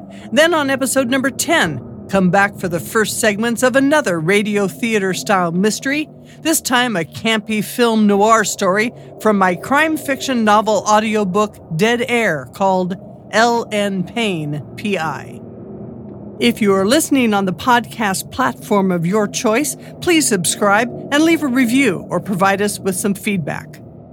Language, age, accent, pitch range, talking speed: English, 50-69, American, 195-250 Hz, 145 wpm